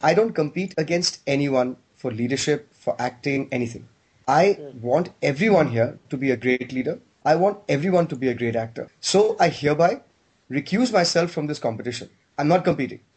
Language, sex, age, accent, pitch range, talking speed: English, male, 20-39, Indian, 135-175 Hz, 175 wpm